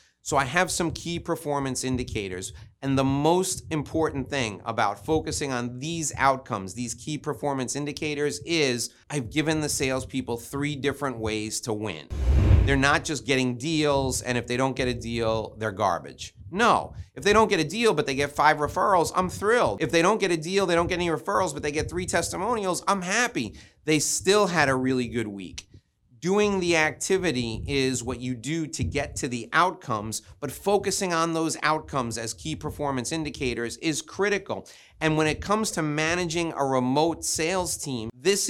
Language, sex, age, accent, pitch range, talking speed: English, male, 30-49, American, 120-160 Hz, 185 wpm